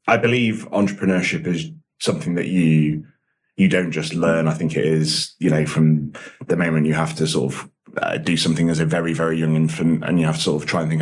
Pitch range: 75-80 Hz